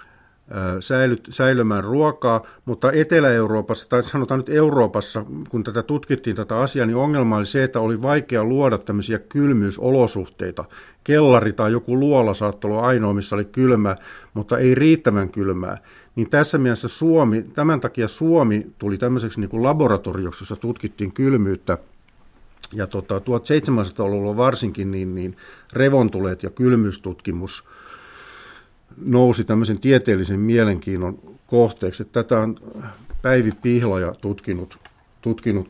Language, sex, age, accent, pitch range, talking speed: Finnish, male, 50-69, native, 100-125 Hz, 125 wpm